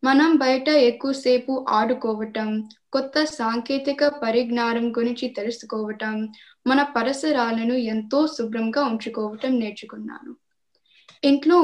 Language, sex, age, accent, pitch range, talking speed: Telugu, female, 10-29, native, 220-275 Hz, 80 wpm